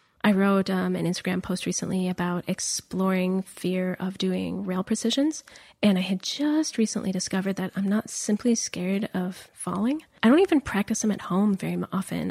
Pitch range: 195-260 Hz